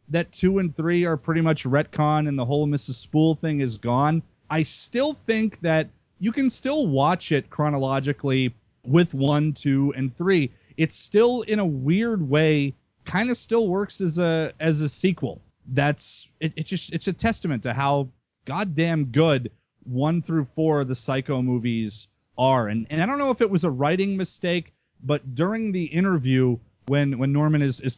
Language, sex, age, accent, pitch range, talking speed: English, male, 30-49, American, 130-165 Hz, 180 wpm